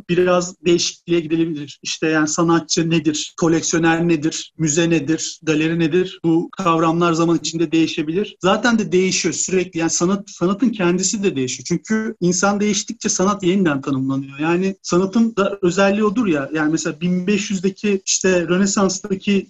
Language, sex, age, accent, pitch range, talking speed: Turkish, male, 40-59, native, 165-200 Hz, 140 wpm